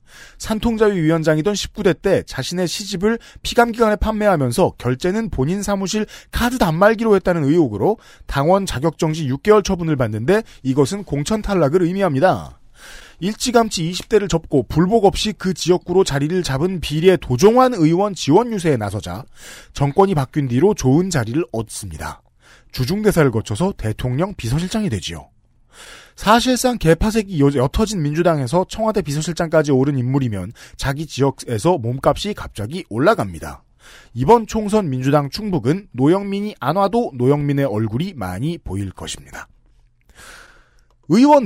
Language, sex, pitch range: Korean, male, 135-205 Hz